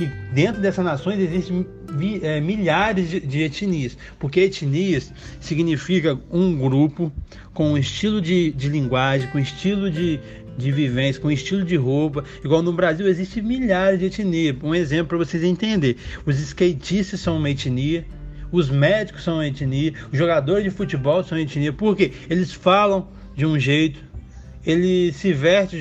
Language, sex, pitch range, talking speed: Portuguese, male, 135-175 Hz, 165 wpm